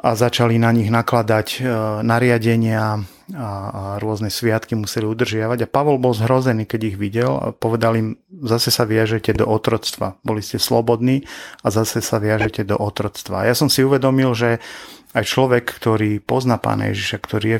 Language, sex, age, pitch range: Slovak, male, 30-49, 100-115 Hz